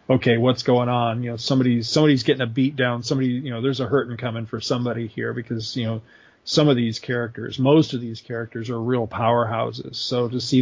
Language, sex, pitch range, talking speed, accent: English, male, 120-135 Hz, 220 wpm, American